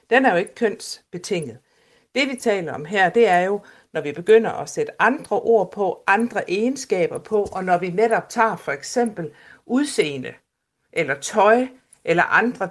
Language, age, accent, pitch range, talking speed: Danish, 60-79, native, 175-230 Hz, 170 wpm